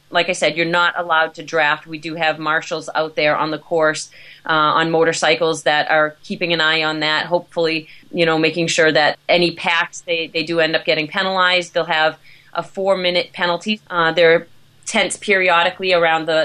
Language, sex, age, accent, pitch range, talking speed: English, female, 30-49, American, 155-175 Hz, 200 wpm